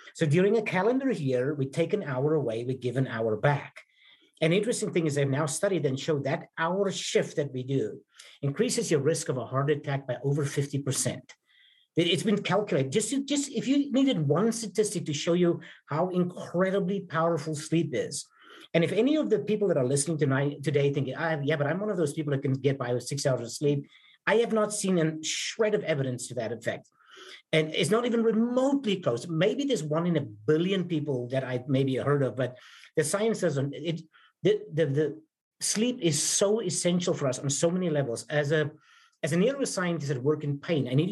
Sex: male